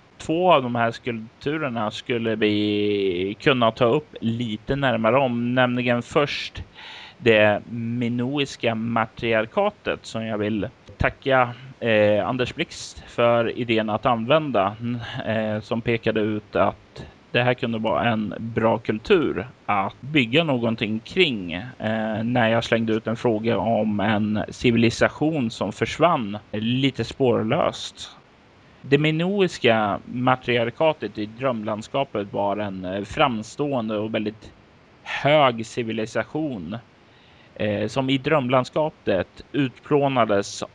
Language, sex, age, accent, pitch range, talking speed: Swedish, male, 30-49, native, 105-130 Hz, 105 wpm